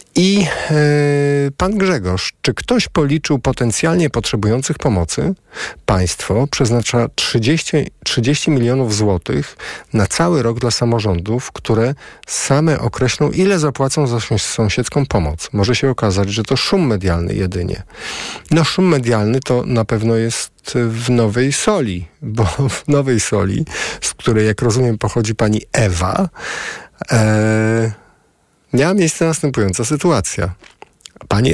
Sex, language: male, Polish